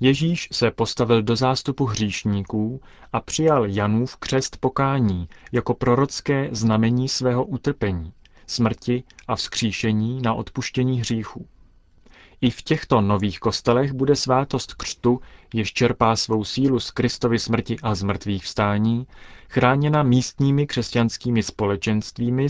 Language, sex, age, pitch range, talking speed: Czech, male, 30-49, 105-130 Hz, 115 wpm